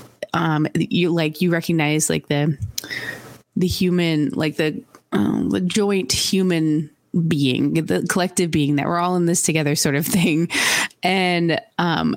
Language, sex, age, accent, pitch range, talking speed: English, female, 20-39, American, 155-205 Hz, 150 wpm